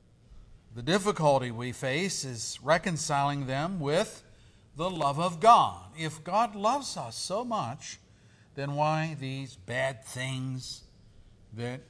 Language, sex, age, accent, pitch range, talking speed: English, male, 50-69, American, 110-165 Hz, 120 wpm